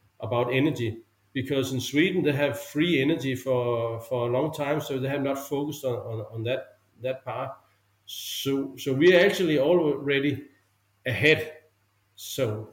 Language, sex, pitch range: English, male, 115-150 Hz